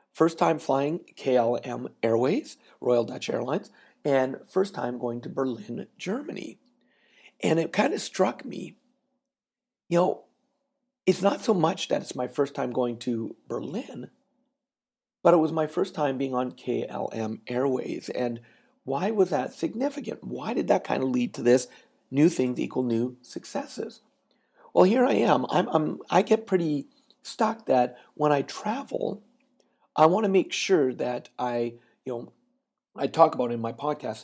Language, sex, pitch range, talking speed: English, male, 125-210 Hz, 160 wpm